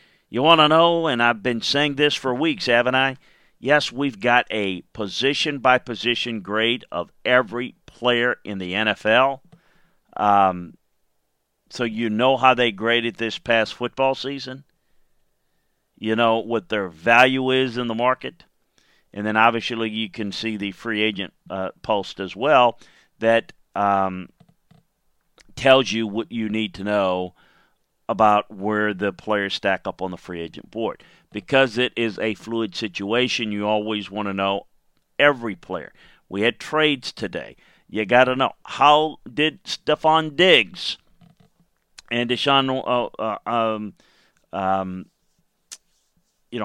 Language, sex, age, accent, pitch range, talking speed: English, male, 50-69, American, 105-130 Hz, 140 wpm